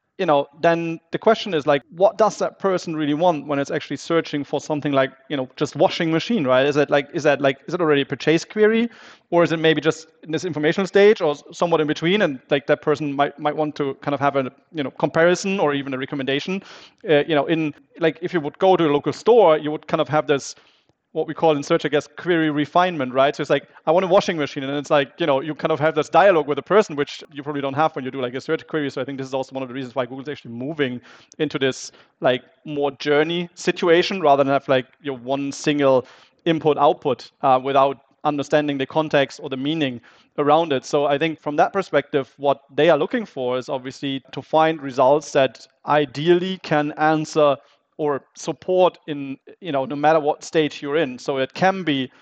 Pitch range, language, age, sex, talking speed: 135-160 Hz, English, 30-49, male, 240 wpm